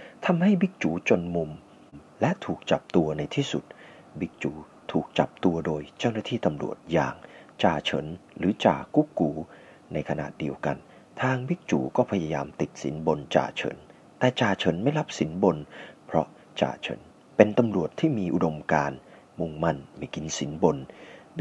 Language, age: Thai, 30-49